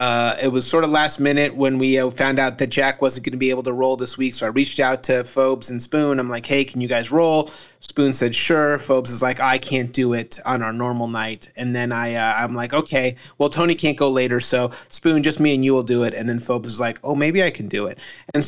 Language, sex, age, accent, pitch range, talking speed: English, male, 30-49, American, 125-155 Hz, 275 wpm